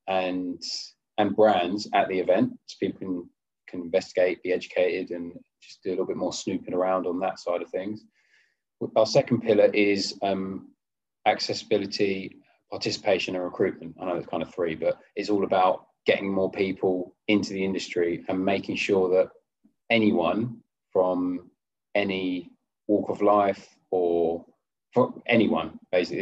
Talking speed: 150 wpm